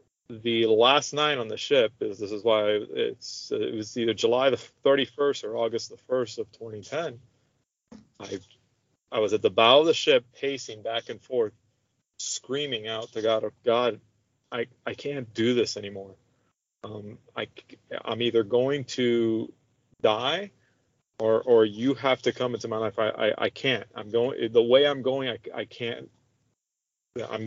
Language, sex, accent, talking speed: English, male, American, 170 wpm